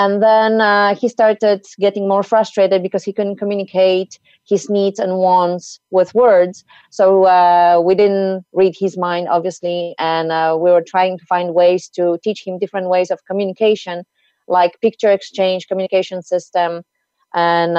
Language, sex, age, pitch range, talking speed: English, female, 30-49, 170-195 Hz, 160 wpm